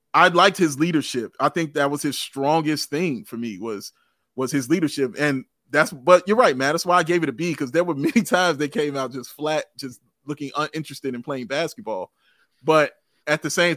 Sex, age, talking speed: male, 30-49, 220 wpm